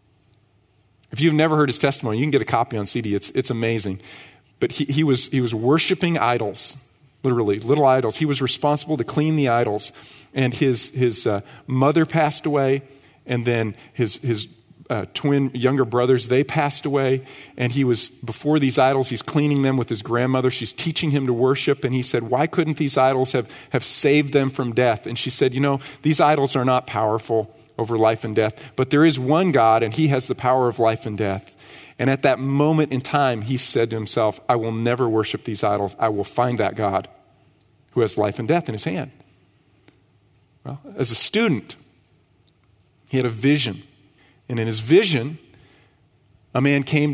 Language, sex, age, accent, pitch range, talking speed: English, male, 40-59, American, 115-140 Hz, 195 wpm